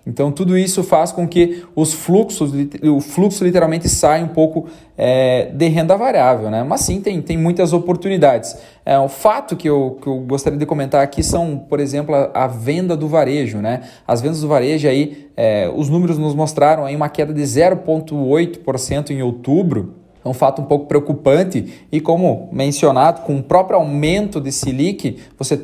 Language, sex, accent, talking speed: Portuguese, male, Brazilian, 165 wpm